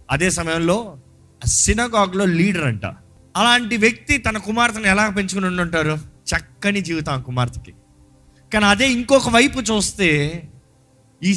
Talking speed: 115 wpm